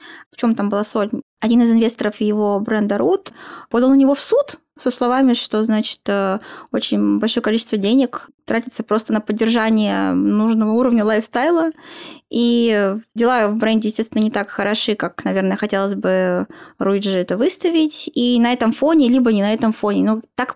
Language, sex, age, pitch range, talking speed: Russian, female, 20-39, 220-270 Hz, 165 wpm